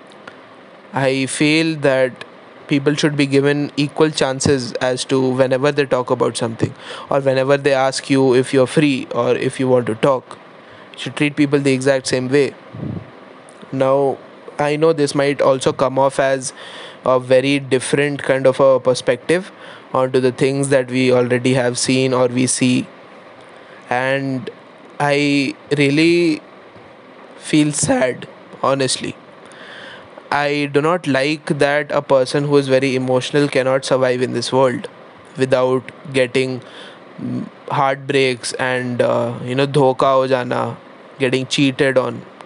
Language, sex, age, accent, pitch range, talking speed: Hindi, male, 20-39, native, 130-145 Hz, 140 wpm